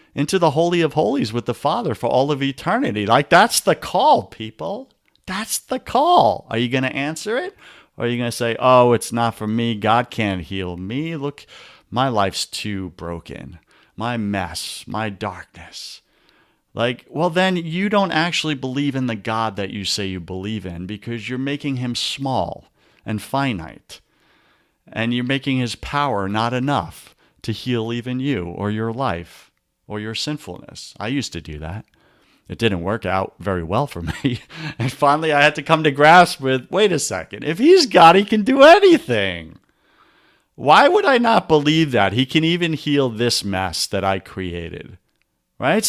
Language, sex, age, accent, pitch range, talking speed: English, male, 50-69, American, 100-145 Hz, 180 wpm